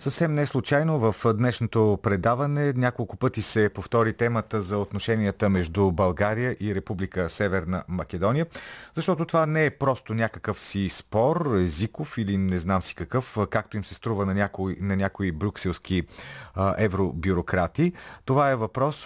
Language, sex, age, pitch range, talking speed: Bulgarian, male, 40-59, 95-120 Hz, 140 wpm